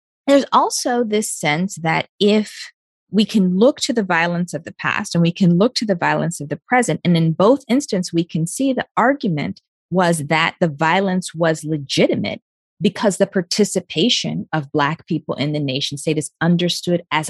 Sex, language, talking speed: female, English, 185 wpm